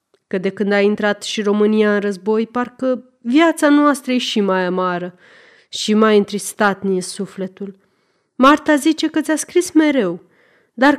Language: Romanian